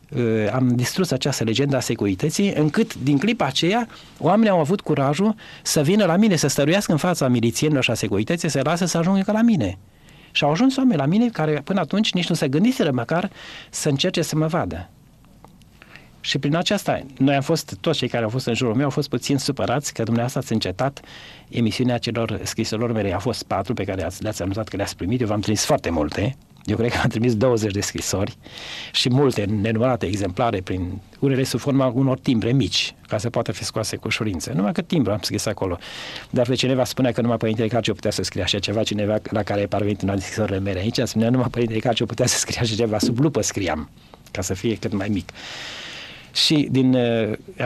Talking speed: 215 wpm